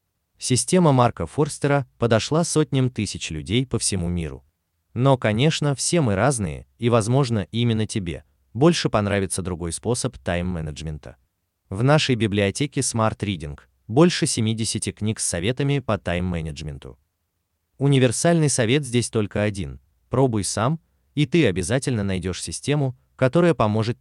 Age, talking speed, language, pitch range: 30-49, 125 wpm, Russian, 90-135 Hz